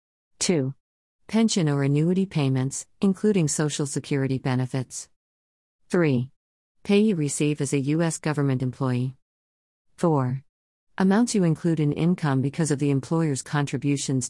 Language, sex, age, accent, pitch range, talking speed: English, female, 50-69, American, 130-160 Hz, 120 wpm